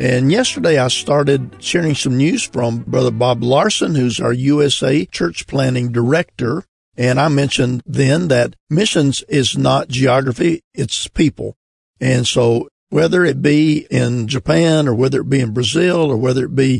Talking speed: 160 wpm